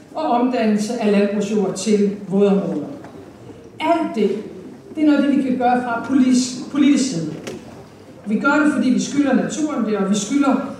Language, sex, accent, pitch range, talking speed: Danish, female, native, 210-255 Hz, 160 wpm